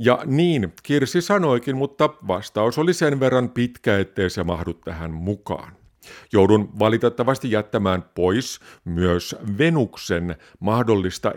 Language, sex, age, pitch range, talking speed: Finnish, male, 50-69, 95-125 Hz, 115 wpm